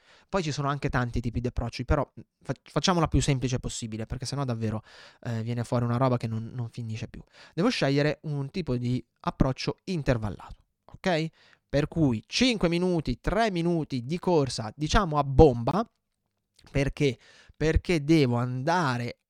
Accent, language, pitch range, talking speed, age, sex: native, Italian, 125-165 Hz, 150 wpm, 20-39, male